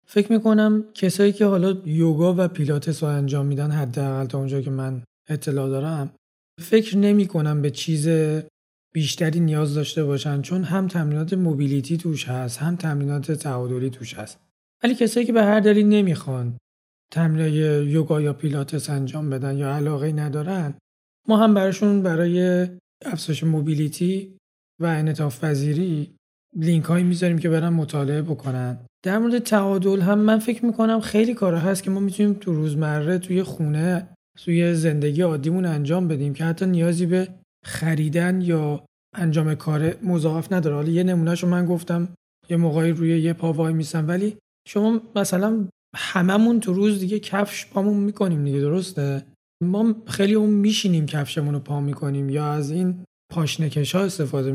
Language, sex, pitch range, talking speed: Persian, male, 150-185 Hz, 155 wpm